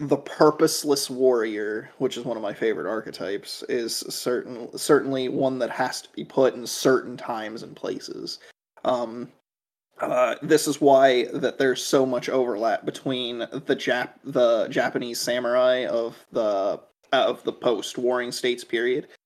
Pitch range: 125-165 Hz